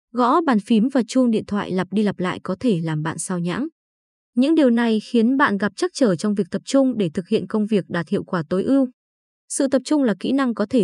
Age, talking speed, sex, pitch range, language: 20-39, 260 wpm, female, 185-255 Hz, Vietnamese